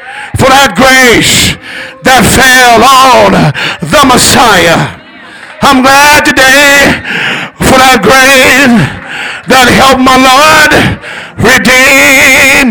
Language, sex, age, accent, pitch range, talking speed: English, male, 50-69, American, 255-290 Hz, 90 wpm